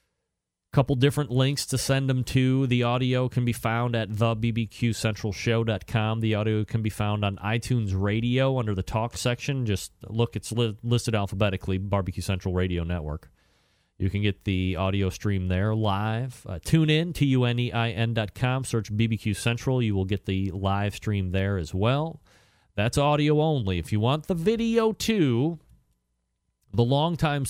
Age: 40-59